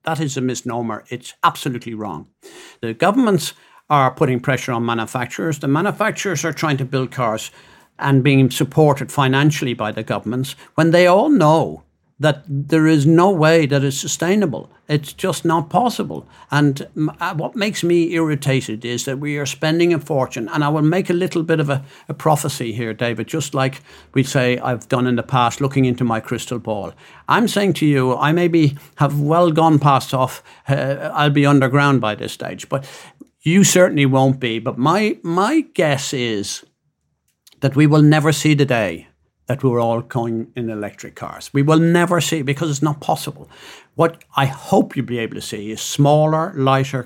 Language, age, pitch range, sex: English, 60-79, 130-160 Hz, male